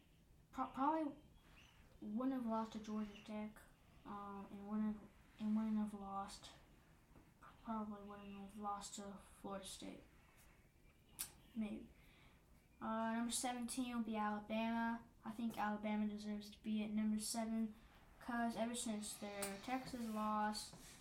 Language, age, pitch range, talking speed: English, 10-29, 205-225 Hz, 125 wpm